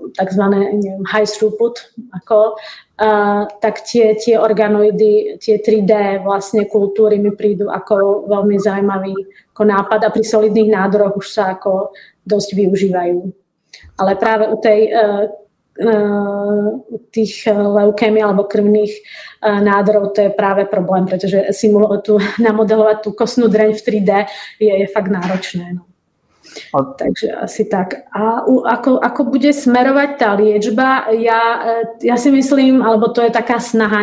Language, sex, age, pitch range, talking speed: Czech, female, 20-39, 205-220 Hz, 130 wpm